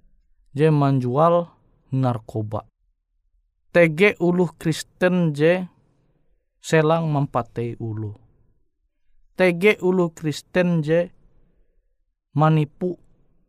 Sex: male